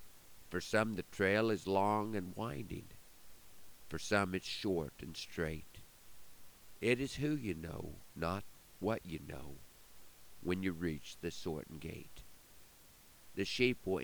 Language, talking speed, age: English, 135 wpm, 50-69